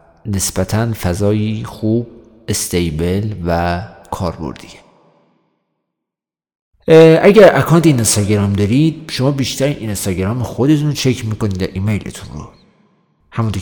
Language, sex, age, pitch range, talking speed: Persian, male, 50-69, 95-115 Hz, 95 wpm